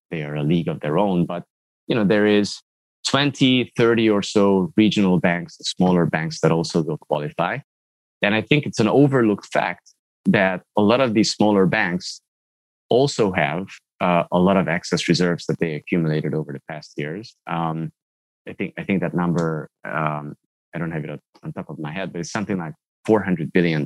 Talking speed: 190 wpm